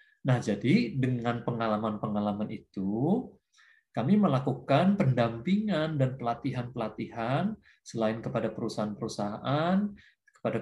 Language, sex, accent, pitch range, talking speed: Indonesian, male, native, 115-165 Hz, 80 wpm